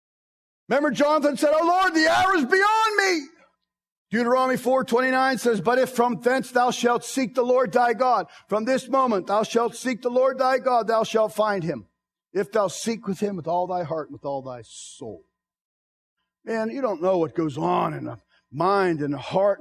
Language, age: English, 50-69